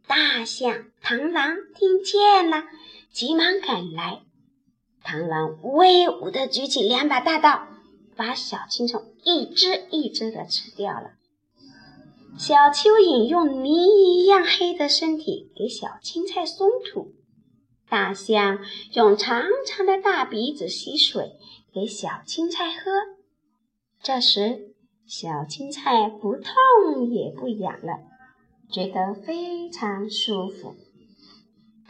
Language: Chinese